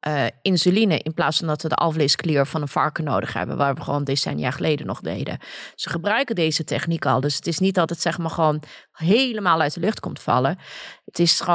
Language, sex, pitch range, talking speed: Dutch, female, 155-195 Hz, 210 wpm